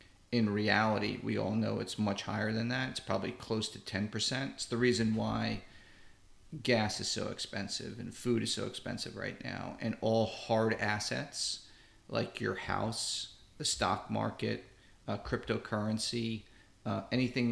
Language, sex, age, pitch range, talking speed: English, male, 40-59, 105-120 Hz, 150 wpm